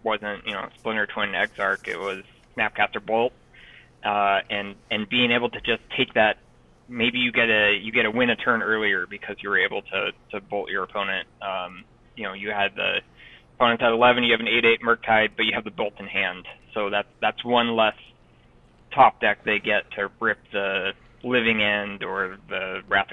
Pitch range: 105-125 Hz